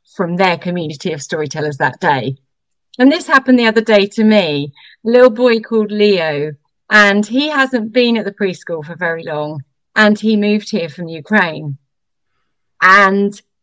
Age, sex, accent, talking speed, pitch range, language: 40-59, female, British, 160 wpm, 180-245 Hz, English